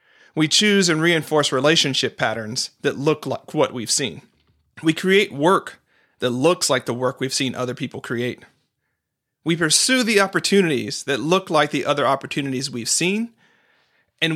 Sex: male